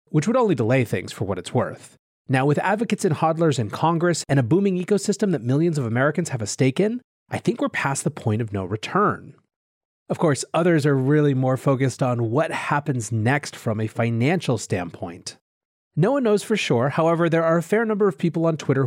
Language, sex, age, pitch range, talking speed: English, male, 30-49, 130-185 Hz, 215 wpm